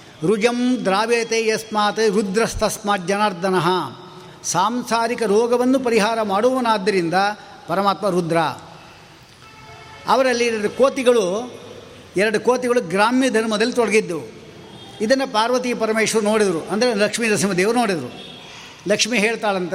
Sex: male